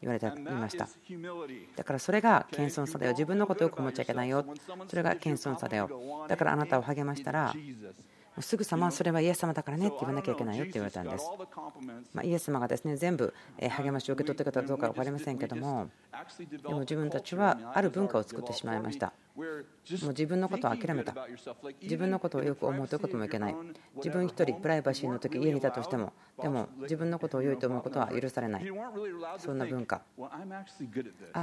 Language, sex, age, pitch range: Japanese, female, 40-59, 130-180 Hz